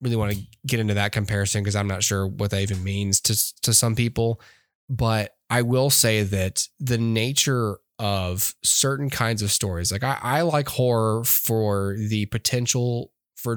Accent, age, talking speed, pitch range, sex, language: American, 10-29, 175 wpm, 100-125 Hz, male, English